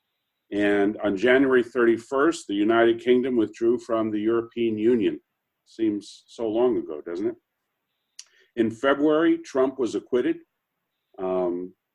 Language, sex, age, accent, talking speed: English, male, 50-69, American, 120 wpm